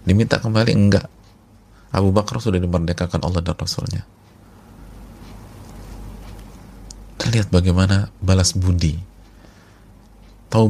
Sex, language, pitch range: male, Indonesian, 95-110 Hz